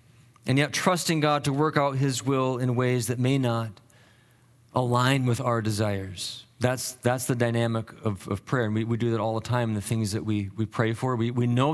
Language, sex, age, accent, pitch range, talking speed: English, male, 40-59, American, 120-145 Hz, 225 wpm